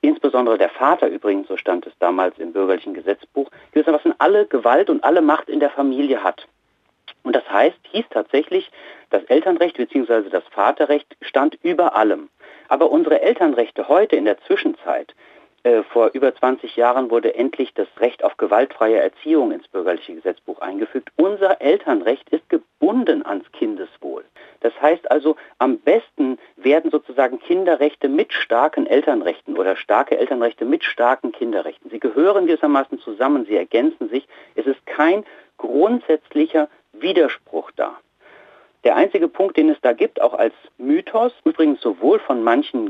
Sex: male